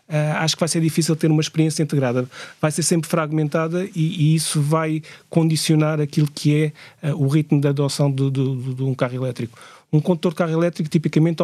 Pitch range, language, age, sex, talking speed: 150-165 Hz, Portuguese, 30-49, male, 195 wpm